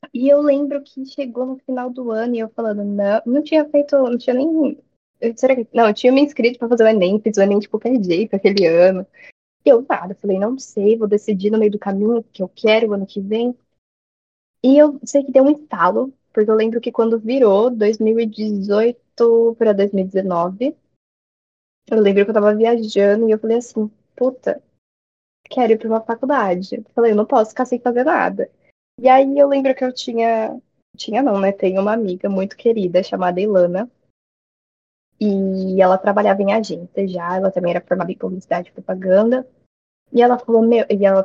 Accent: Brazilian